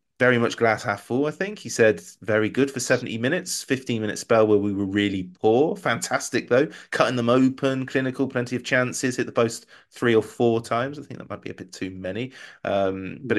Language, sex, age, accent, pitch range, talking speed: English, male, 20-39, British, 105-125 Hz, 215 wpm